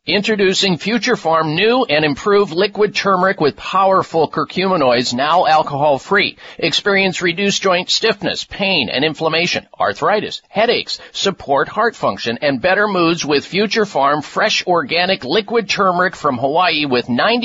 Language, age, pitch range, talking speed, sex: English, 50-69, 165-200 Hz, 135 wpm, male